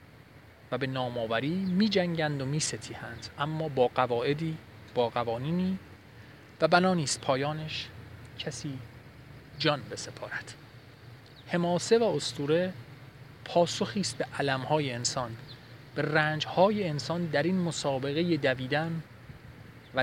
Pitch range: 125-155 Hz